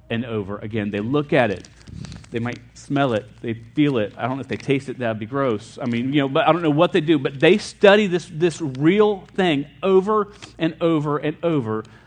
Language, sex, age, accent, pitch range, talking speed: English, male, 40-59, American, 115-155 Hz, 240 wpm